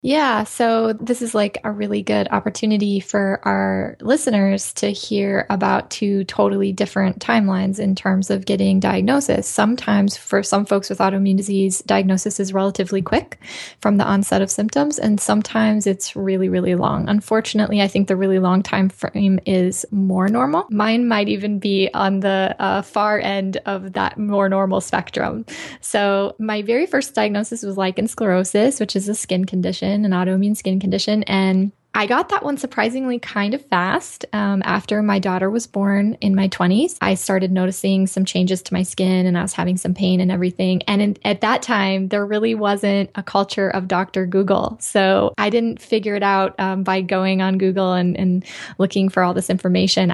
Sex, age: female, 10-29